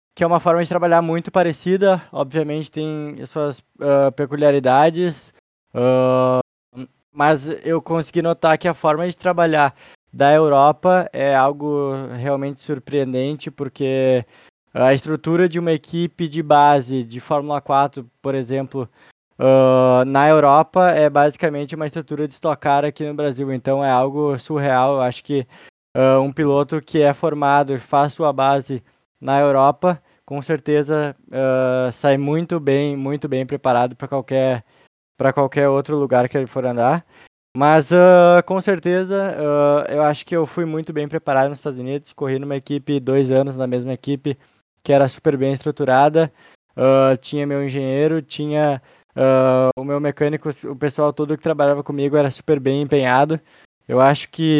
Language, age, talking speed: Portuguese, 20-39, 155 wpm